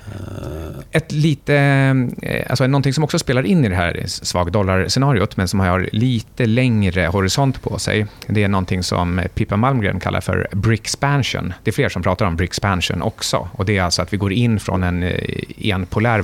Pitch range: 90-115 Hz